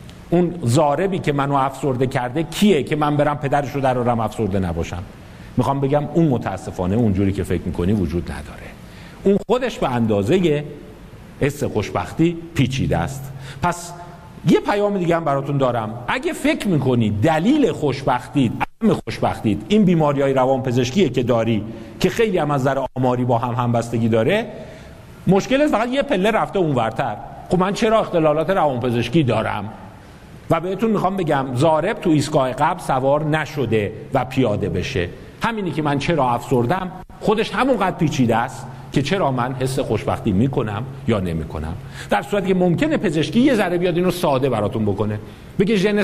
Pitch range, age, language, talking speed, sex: 120-175 Hz, 50-69, Persian, 160 wpm, male